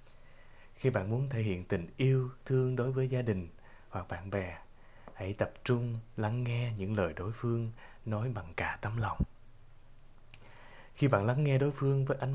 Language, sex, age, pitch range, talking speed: Vietnamese, male, 20-39, 100-125 Hz, 180 wpm